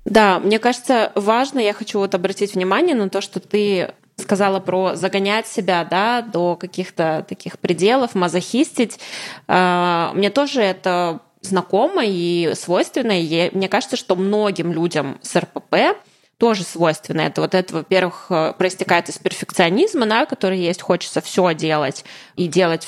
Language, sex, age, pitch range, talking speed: Russian, female, 20-39, 180-220 Hz, 145 wpm